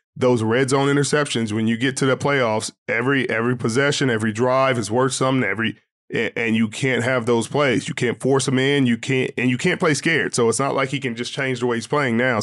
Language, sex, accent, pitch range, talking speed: English, male, American, 120-140 Hz, 240 wpm